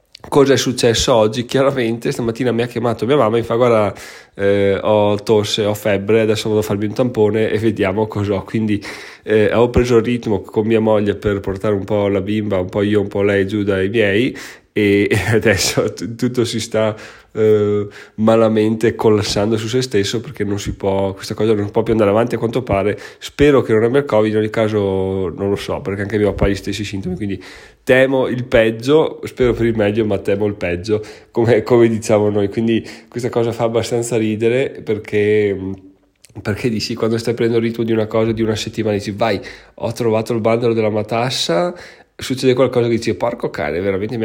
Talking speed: 205 wpm